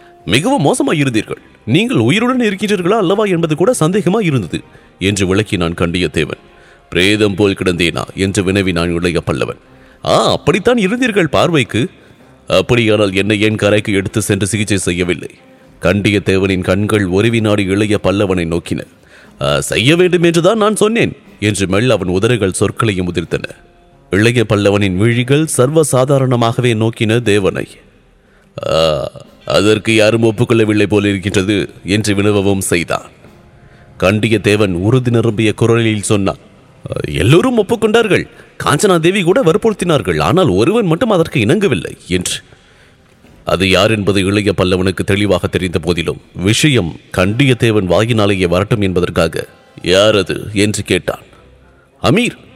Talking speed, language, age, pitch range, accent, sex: 105 wpm, English, 30-49, 95-120 Hz, Indian, male